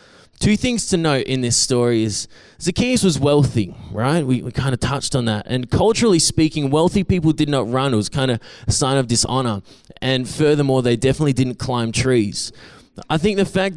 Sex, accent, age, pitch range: male, Australian, 20-39, 130-175 Hz